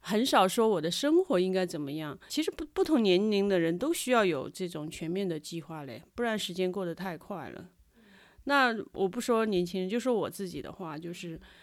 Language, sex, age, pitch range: Chinese, female, 30-49, 175-225 Hz